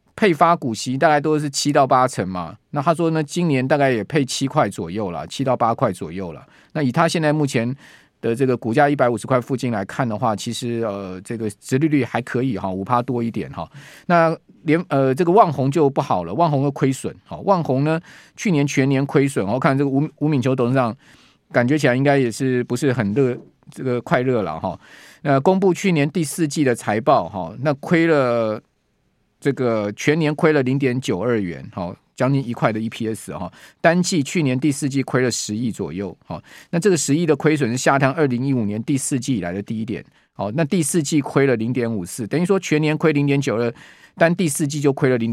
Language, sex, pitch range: Chinese, male, 120-155 Hz